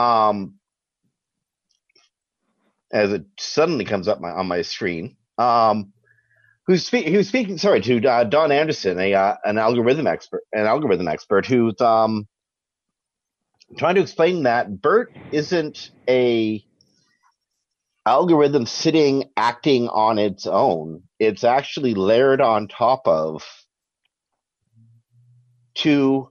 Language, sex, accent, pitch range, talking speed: English, male, American, 105-145 Hz, 115 wpm